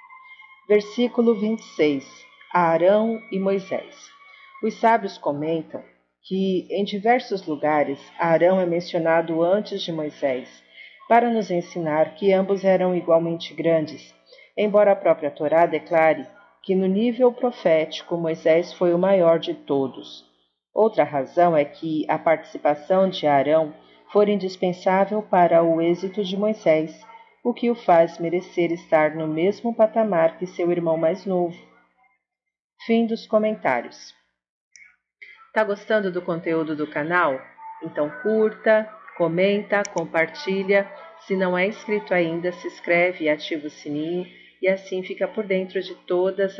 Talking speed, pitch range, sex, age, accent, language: 130 wpm, 160-210 Hz, female, 40-59, Brazilian, Portuguese